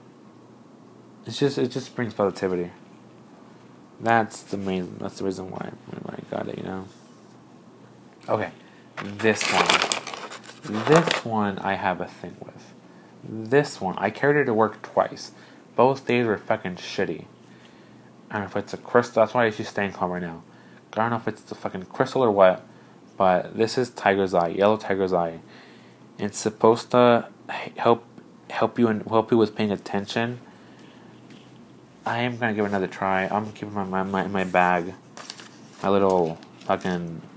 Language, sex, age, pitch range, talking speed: English, male, 20-39, 95-115 Hz, 170 wpm